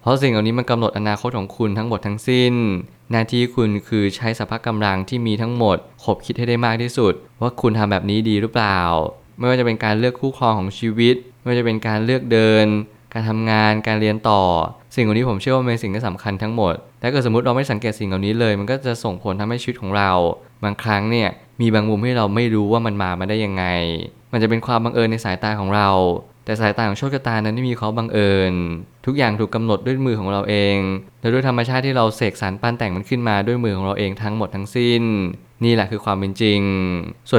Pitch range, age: 100-120 Hz, 20-39